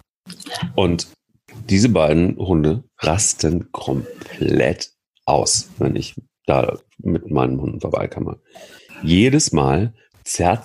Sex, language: male, German